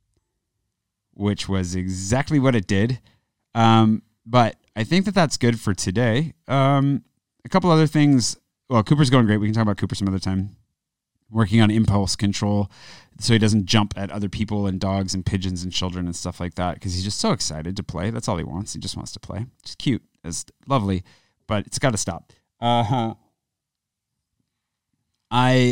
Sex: male